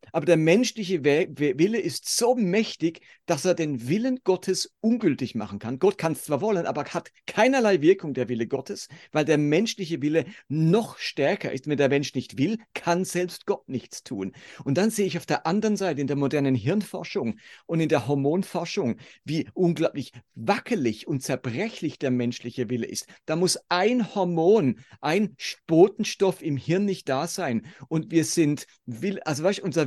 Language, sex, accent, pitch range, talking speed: German, male, German, 145-185 Hz, 180 wpm